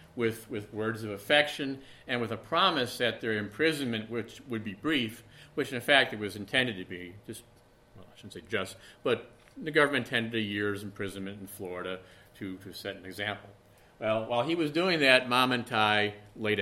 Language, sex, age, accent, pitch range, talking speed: English, male, 50-69, American, 100-125 Hz, 195 wpm